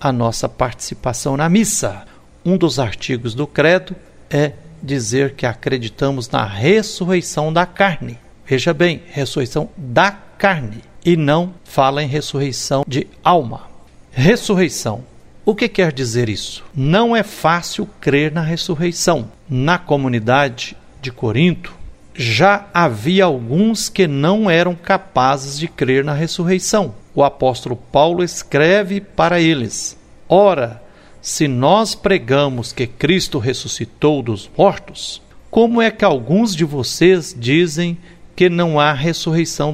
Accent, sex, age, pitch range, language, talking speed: Brazilian, male, 60-79, 130-185 Hz, Portuguese, 125 wpm